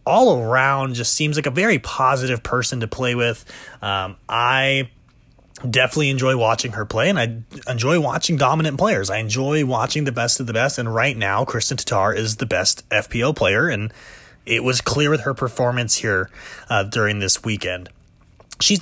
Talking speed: 180 wpm